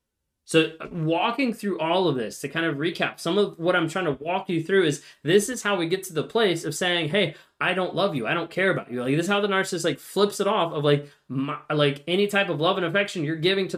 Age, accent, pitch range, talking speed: 20-39, American, 140-180 Hz, 275 wpm